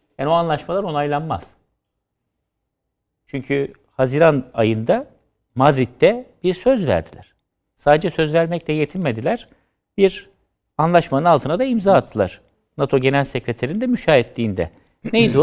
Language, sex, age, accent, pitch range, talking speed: Turkish, male, 60-79, native, 120-160 Hz, 100 wpm